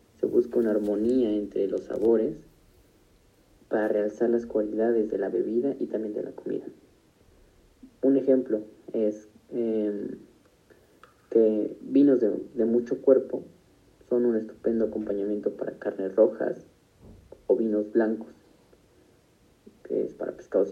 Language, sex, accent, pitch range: Spanish, male, Mexican, 110-125 Hz